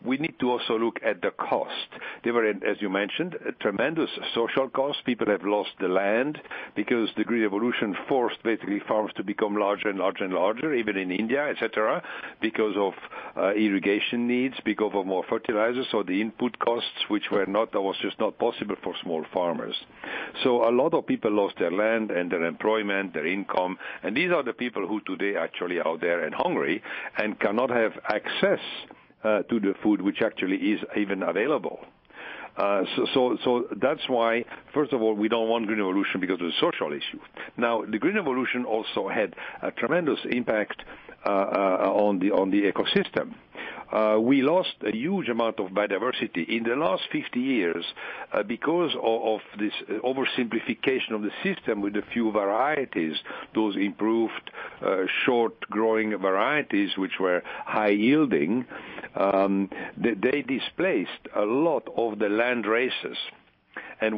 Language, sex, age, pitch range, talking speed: English, male, 60-79, 100-125 Hz, 170 wpm